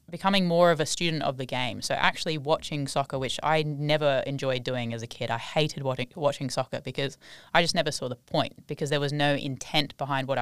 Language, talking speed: English, 225 wpm